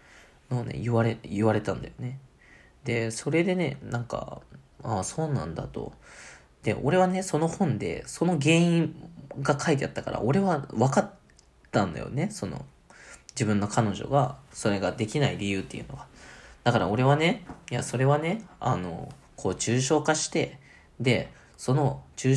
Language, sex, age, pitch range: Japanese, male, 20-39, 110-145 Hz